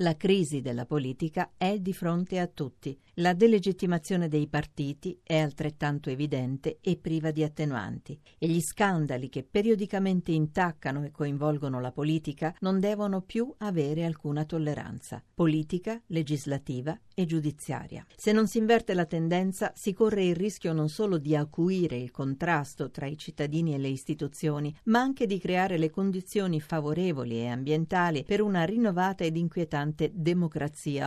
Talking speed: 150 wpm